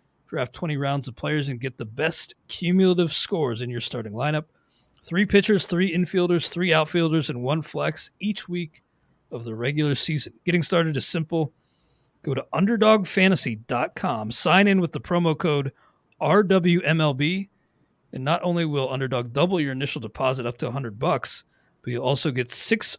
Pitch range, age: 130-175 Hz, 40-59